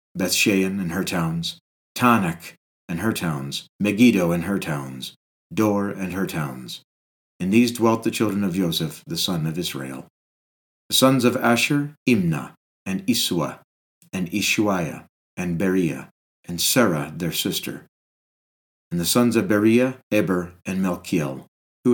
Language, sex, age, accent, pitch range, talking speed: English, male, 50-69, American, 85-110 Hz, 140 wpm